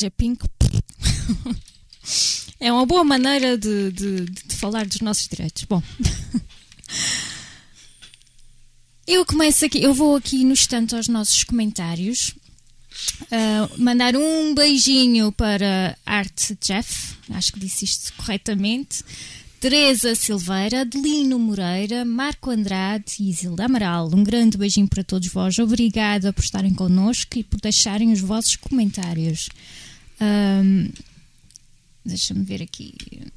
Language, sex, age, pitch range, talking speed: Portuguese, female, 20-39, 185-230 Hz, 115 wpm